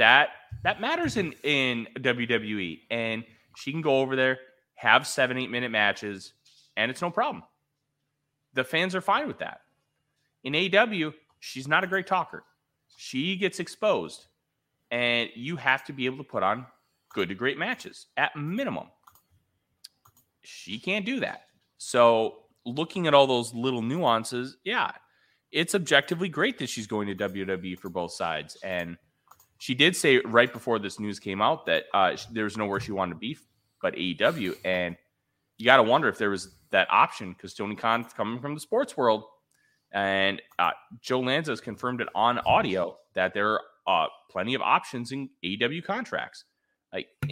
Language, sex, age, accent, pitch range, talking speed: English, male, 30-49, American, 110-150 Hz, 170 wpm